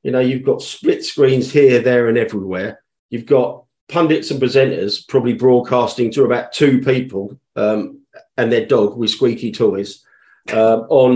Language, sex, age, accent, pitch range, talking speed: English, male, 40-59, British, 120-155 Hz, 160 wpm